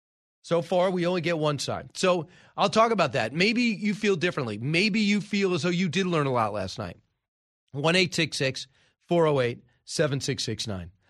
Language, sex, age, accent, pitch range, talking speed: English, male, 30-49, American, 135-175 Hz, 170 wpm